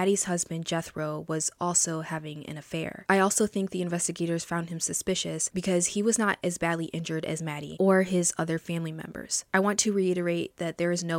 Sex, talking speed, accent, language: female, 205 wpm, American, English